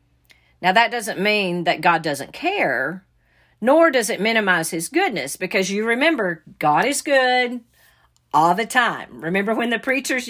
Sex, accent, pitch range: female, American, 170-240 Hz